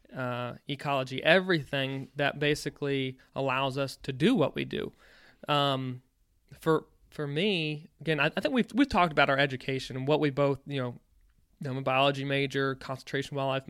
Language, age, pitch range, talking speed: English, 20-39, 135-155 Hz, 165 wpm